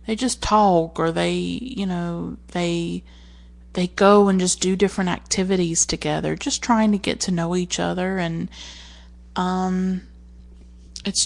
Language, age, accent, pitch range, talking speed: English, 30-49, American, 125-195 Hz, 145 wpm